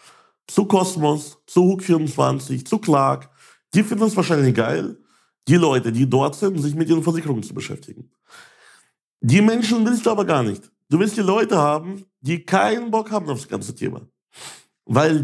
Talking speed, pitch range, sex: 175 wpm, 135-190 Hz, male